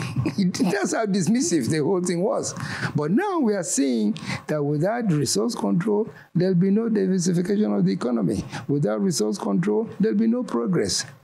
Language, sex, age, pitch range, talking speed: English, male, 60-79, 130-185 Hz, 160 wpm